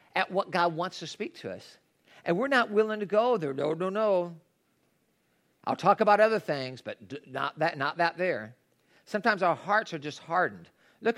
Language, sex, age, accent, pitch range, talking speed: English, male, 50-69, American, 140-185 Hz, 195 wpm